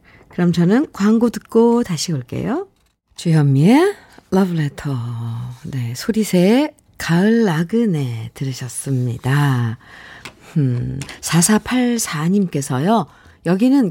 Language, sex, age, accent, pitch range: Korean, female, 50-69, native, 155-250 Hz